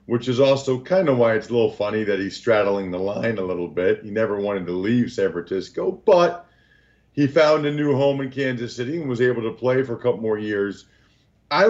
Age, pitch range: 40-59, 110-150 Hz